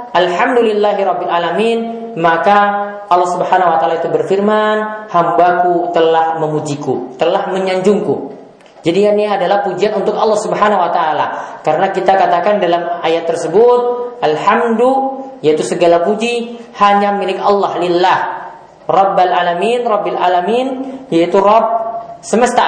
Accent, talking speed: Indonesian, 115 wpm